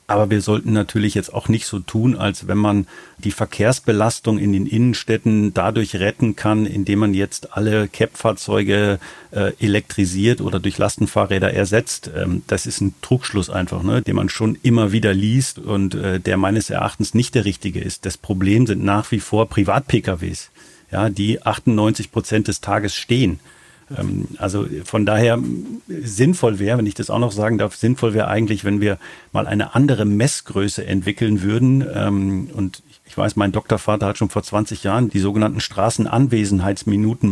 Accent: German